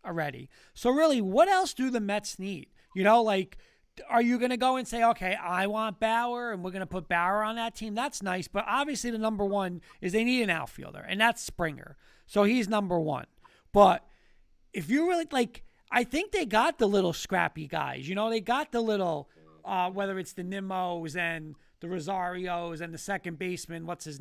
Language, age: English, 30-49